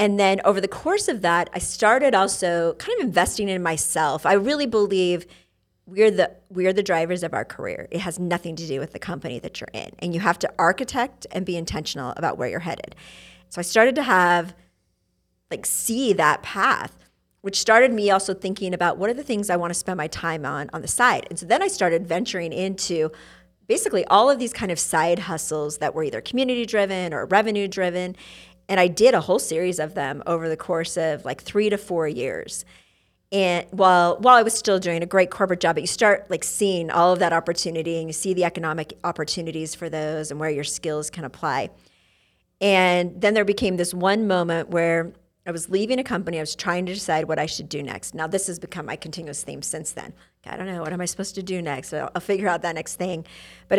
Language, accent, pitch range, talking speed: English, American, 165-195 Hz, 225 wpm